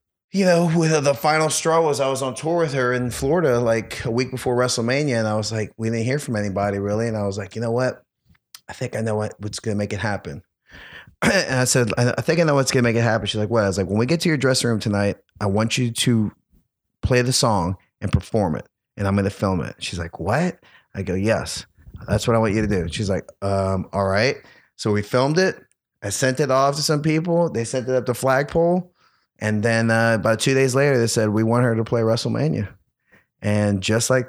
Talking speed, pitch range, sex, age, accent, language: 250 wpm, 105-130 Hz, male, 30-49, American, English